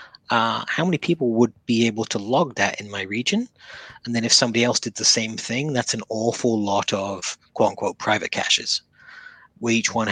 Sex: male